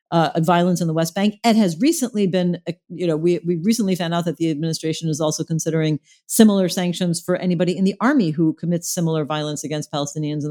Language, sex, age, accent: English, female, 40-59, American